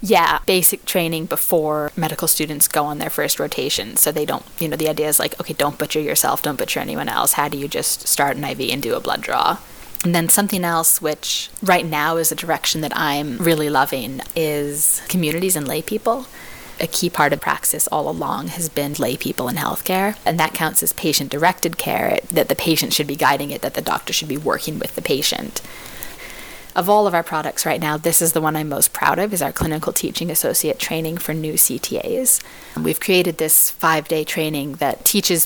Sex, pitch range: female, 150-175 Hz